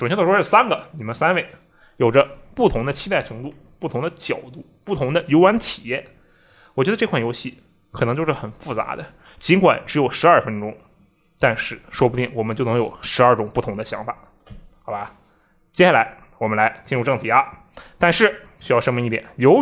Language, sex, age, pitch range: Chinese, male, 20-39, 110-135 Hz